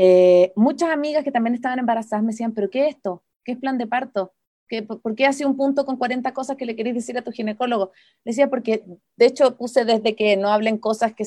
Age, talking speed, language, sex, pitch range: 30-49, 245 wpm, Spanish, female, 205-265 Hz